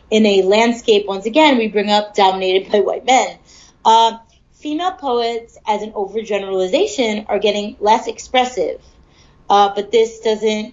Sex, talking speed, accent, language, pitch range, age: female, 145 wpm, American, English, 210-265 Hz, 30-49